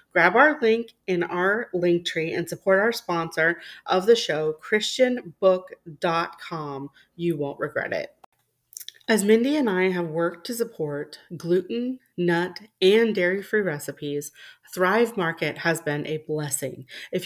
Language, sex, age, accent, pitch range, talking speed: English, female, 30-49, American, 160-225 Hz, 135 wpm